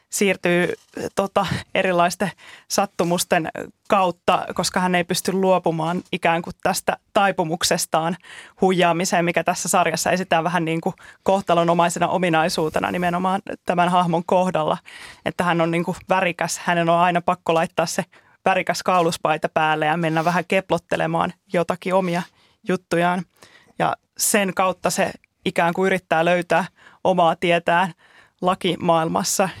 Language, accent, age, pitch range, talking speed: Finnish, native, 30-49, 170-190 Hz, 120 wpm